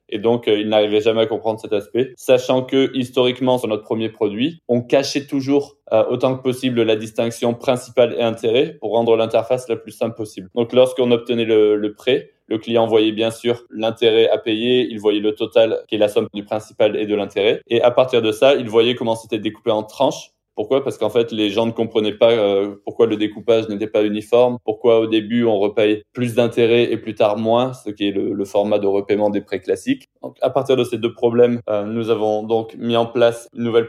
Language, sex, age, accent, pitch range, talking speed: French, male, 20-39, French, 110-125 Hz, 230 wpm